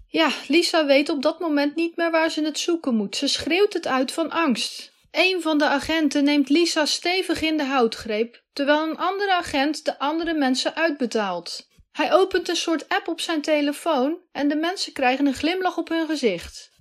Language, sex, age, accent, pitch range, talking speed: Dutch, female, 30-49, Dutch, 255-325 Hz, 195 wpm